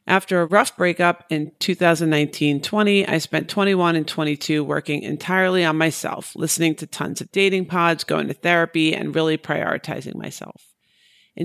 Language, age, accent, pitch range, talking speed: English, 40-59, American, 155-185 Hz, 150 wpm